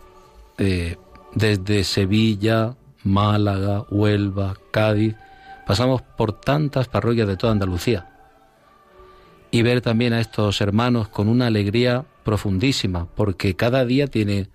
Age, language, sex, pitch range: 40-59, Spanish, male, 100-120 Hz